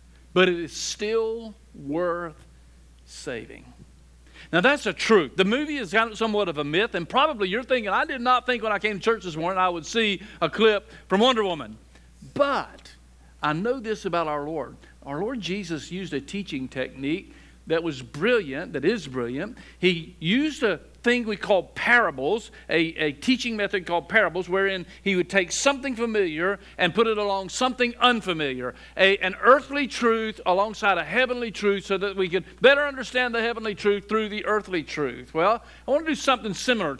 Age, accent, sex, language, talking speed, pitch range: 50-69, American, male, English, 180 wpm, 150-210 Hz